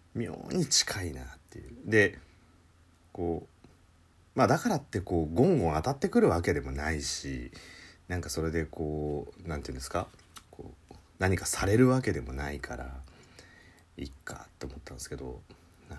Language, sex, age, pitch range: Japanese, male, 40-59, 80-90 Hz